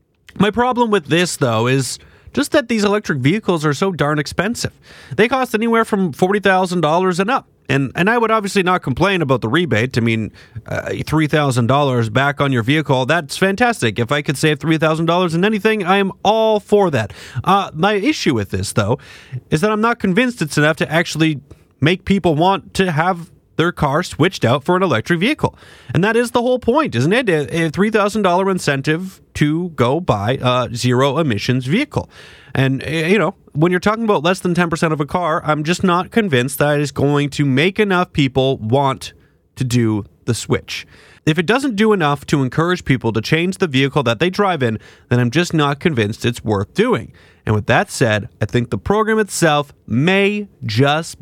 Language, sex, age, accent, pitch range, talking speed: English, male, 30-49, American, 130-190 Hz, 195 wpm